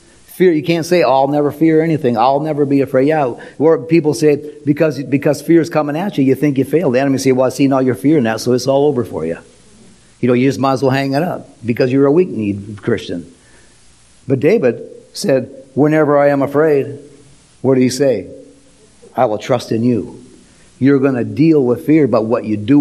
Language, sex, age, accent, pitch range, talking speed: English, male, 50-69, American, 125-155 Hz, 220 wpm